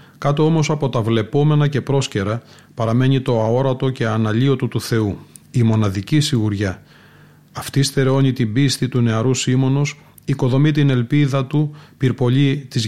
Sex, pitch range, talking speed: male, 115-140 Hz, 140 wpm